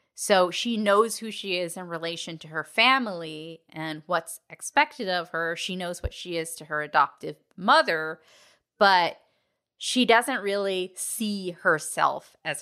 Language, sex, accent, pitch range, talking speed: English, female, American, 170-220 Hz, 150 wpm